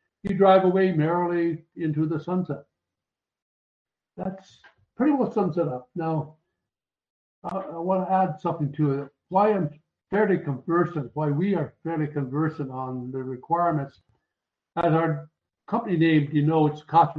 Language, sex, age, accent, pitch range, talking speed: English, male, 60-79, American, 135-160 Hz, 145 wpm